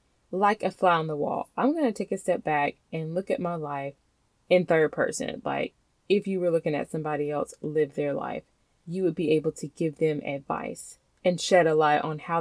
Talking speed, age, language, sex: 220 wpm, 20-39, English, female